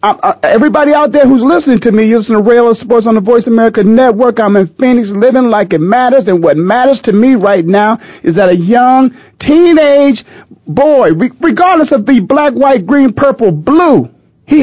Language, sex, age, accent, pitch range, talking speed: English, male, 40-59, American, 235-290 Hz, 205 wpm